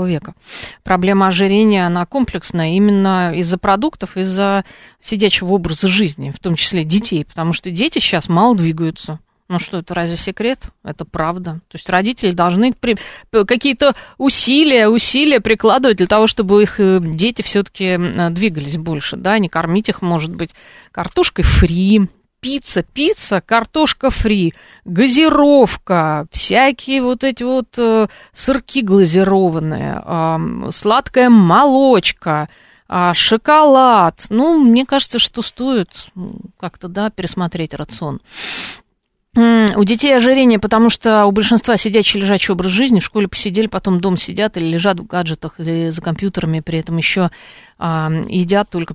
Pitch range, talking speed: 170-225 Hz, 130 wpm